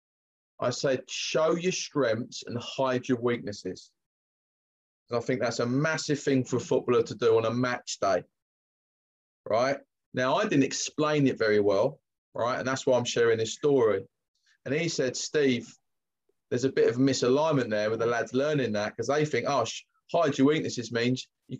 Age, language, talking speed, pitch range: 20-39, English, 185 wpm, 130-170 Hz